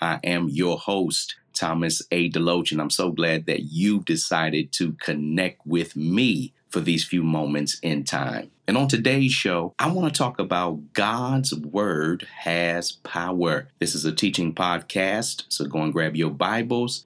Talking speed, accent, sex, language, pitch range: 170 wpm, American, male, English, 75-95 Hz